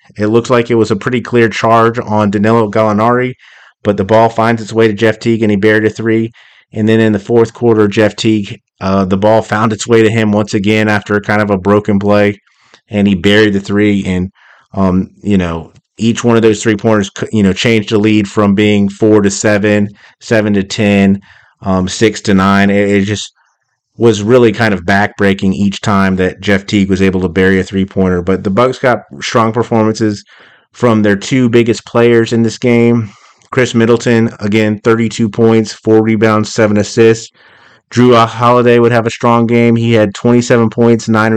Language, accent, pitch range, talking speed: English, American, 100-115 Hz, 195 wpm